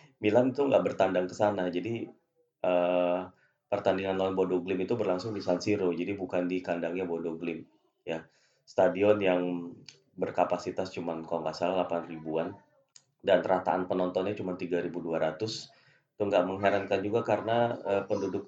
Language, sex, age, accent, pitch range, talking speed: Indonesian, male, 30-49, native, 85-100 Hz, 145 wpm